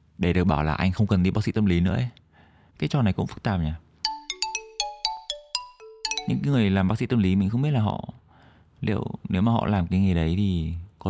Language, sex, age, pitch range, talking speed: Vietnamese, male, 20-39, 85-115 Hz, 230 wpm